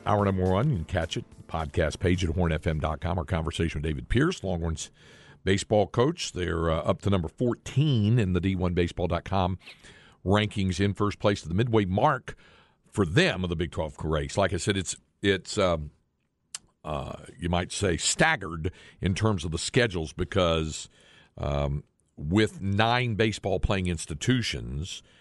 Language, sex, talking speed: English, male, 155 wpm